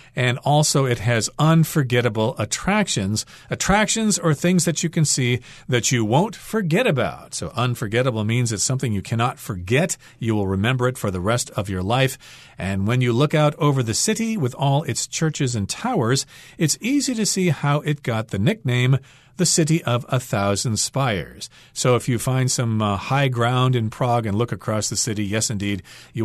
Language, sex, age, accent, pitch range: Chinese, male, 40-59, American, 110-140 Hz